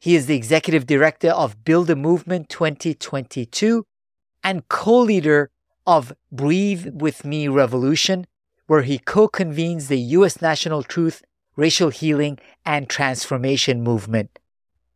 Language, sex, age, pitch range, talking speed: English, male, 50-69, 135-170 Hz, 115 wpm